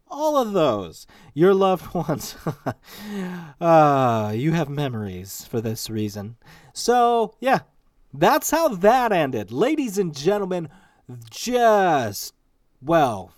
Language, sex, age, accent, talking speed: English, male, 30-49, American, 110 wpm